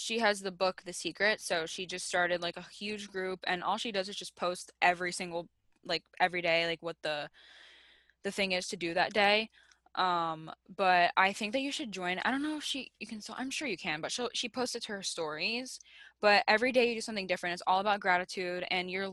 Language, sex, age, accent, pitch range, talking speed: English, female, 10-29, American, 175-210 Hz, 240 wpm